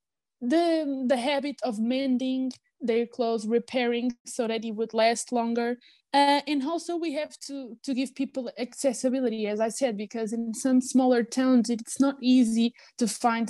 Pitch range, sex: 220-265 Hz, female